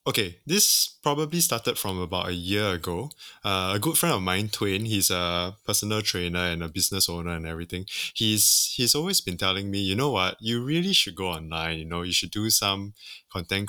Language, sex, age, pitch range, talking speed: English, male, 20-39, 90-110 Hz, 205 wpm